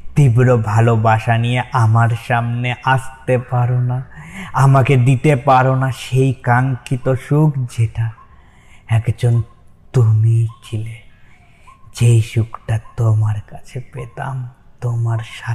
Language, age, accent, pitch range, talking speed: Bengali, 20-39, native, 110-130 Hz, 75 wpm